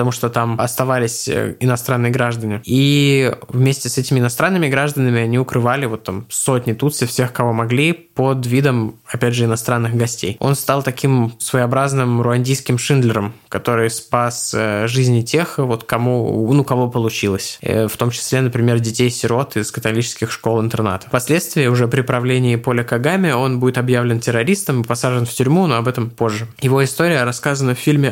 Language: Russian